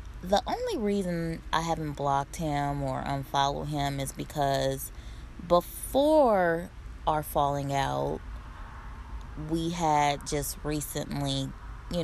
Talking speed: 105 wpm